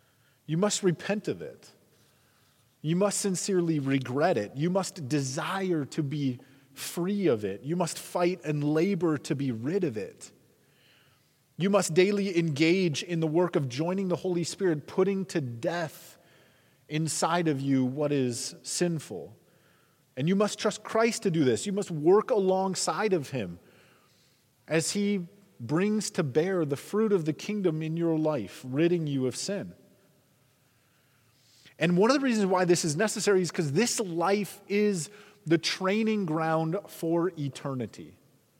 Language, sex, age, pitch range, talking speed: English, male, 30-49, 140-190 Hz, 155 wpm